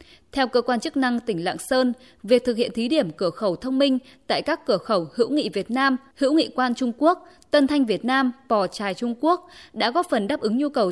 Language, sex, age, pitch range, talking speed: Vietnamese, female, 20-39, 215-275 Hz, 245 wpm